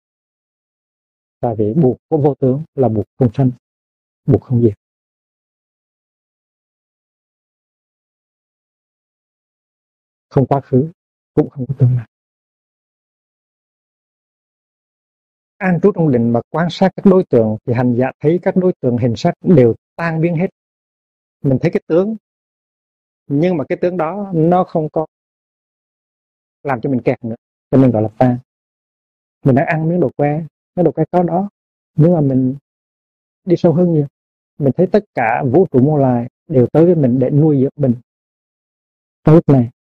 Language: Vietnamese